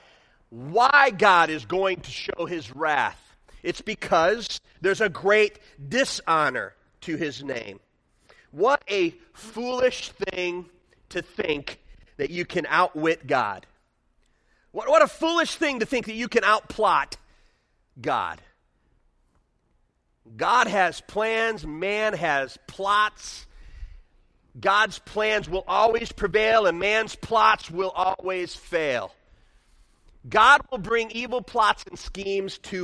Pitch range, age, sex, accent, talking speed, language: 195-285 Hz, 40-59, male, American, 120 wpm, English